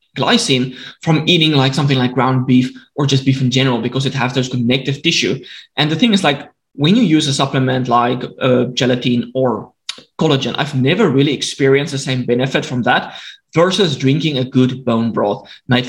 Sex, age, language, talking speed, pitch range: male, 20-39, English, 190 wpm, 130-160 Hz